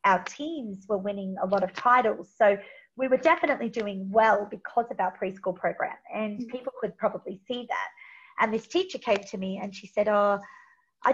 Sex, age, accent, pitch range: female, 30-49, Australian, 205-275 Hz